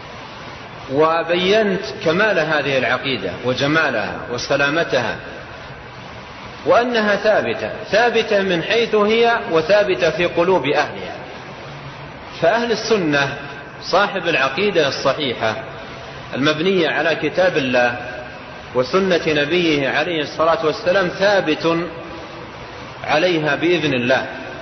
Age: 40-59